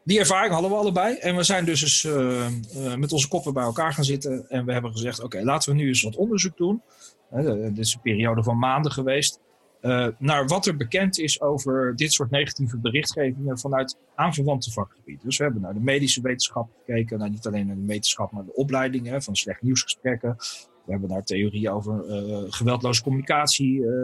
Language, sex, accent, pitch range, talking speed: English, male, Dutch, 115-145 Hz, 210 wpm